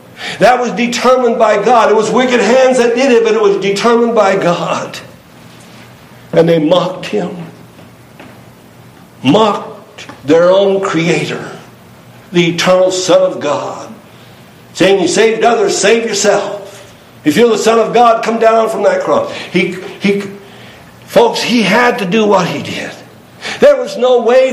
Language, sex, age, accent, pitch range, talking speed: English, male, 60-79, American, 170-235 Hz, 145 wpm